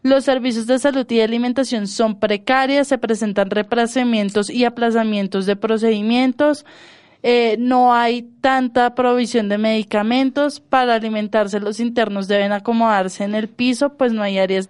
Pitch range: 215-260 Hz